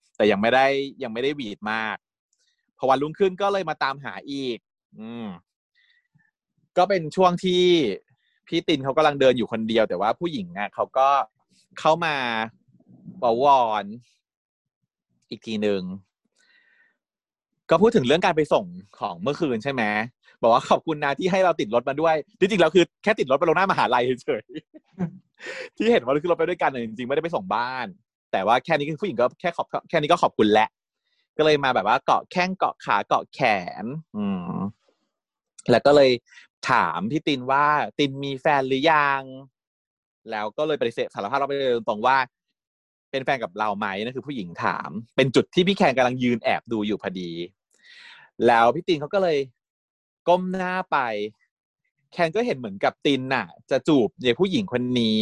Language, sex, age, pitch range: Thai, male, 30-49, 120-185 Hz